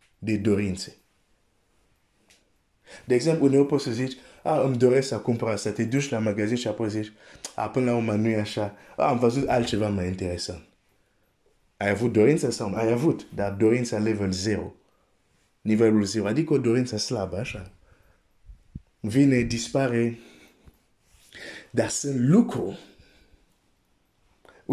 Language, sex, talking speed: Romanian, male, 135 wpm